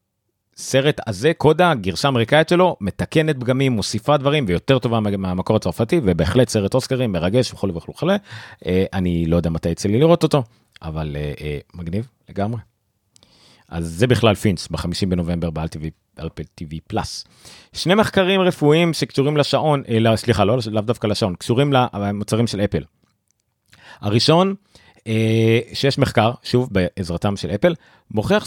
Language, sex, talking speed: Hebrew, male, 135 wpm